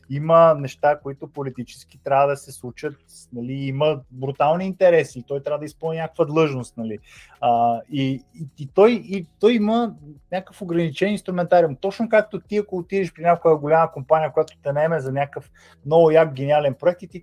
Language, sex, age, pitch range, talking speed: Bulgarian, male, 20-39, 140-180 Hz, 165 wpm